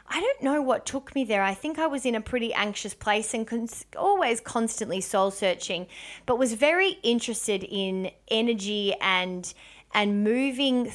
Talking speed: 165 wpm